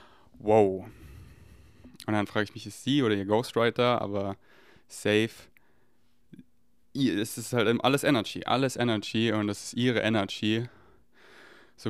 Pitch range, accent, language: 105-115 Hz, German, German